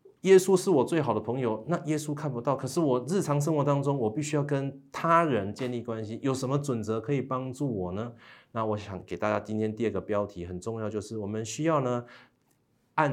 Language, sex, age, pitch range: Chinese, male, 30-49, 105-140 Hz